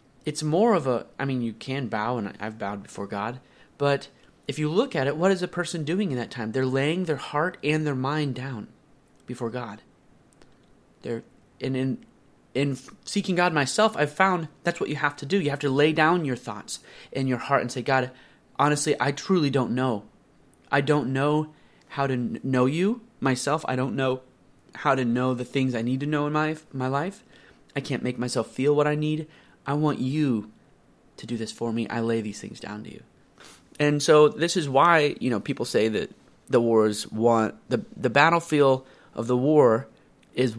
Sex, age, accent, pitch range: male, 30-49, American, 120-150 Hz